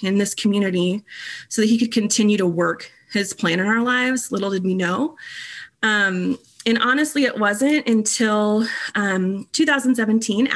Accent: American